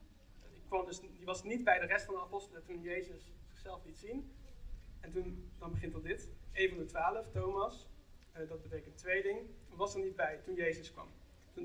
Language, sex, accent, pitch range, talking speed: Dutch, male, Dutch, 160-195 Hz, 200 wpm